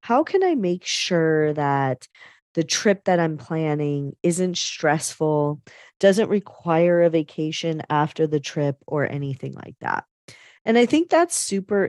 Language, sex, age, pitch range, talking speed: English, female, 30-49, 150-195 Hz, 145 wpm